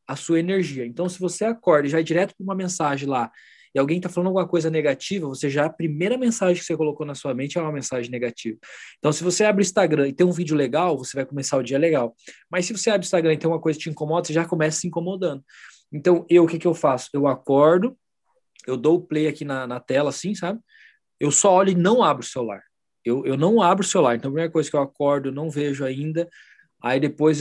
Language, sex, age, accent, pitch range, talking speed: Portuguese, male, 20-39, Brazilian, 140-175 Hz, 260 wpm